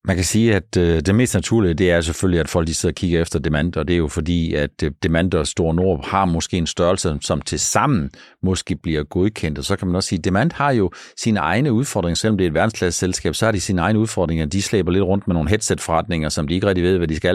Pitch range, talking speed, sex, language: 85-105 Hz, 265 wpm, male, Danish